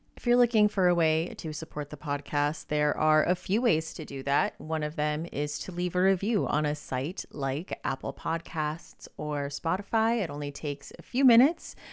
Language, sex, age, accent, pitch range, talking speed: English, female, 30-49, American, 145-195 Hz, 200 wpm